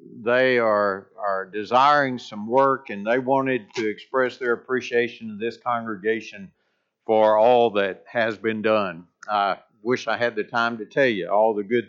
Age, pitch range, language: 50-69, 115-150 Hz, English